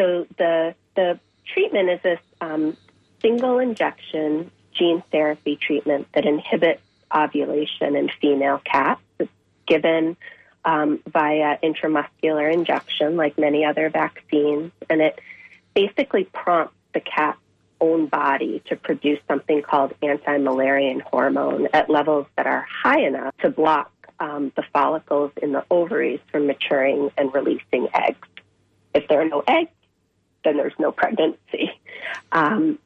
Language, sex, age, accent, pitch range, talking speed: English, female, 30-49, American, 145-170 Hz, 130 wpm